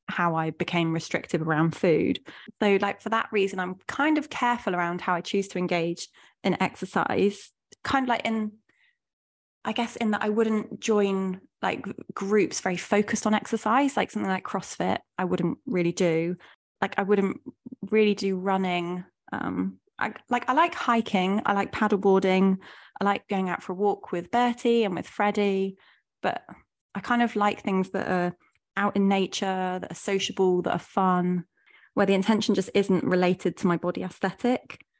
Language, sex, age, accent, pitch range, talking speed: English, female, 20-39, British, 180-215 Hz, 175 wpm